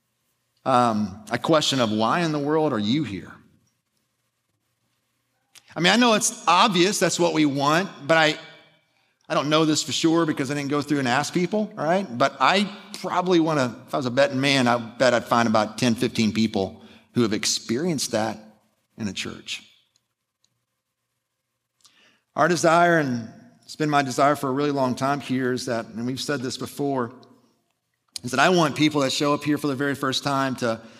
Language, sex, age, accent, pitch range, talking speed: English, male, 40-59, American, 120-160 Hz, 190 wpm